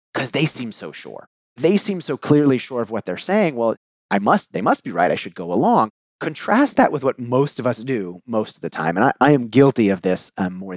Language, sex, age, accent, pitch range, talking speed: English, male, 30-49, American, 115-155 Hz, 255 wpm